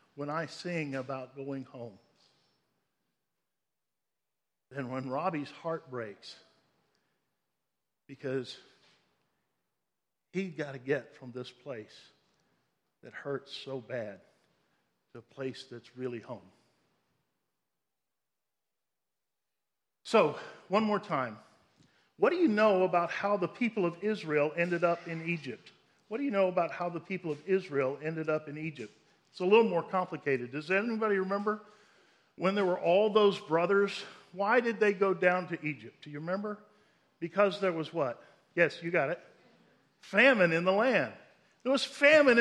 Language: English